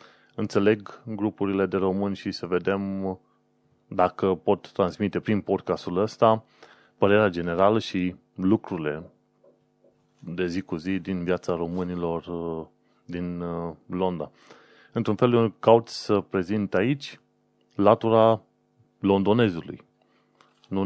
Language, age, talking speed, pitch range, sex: Romanian, 30-49, 105 wpm, 90-115 Hz, male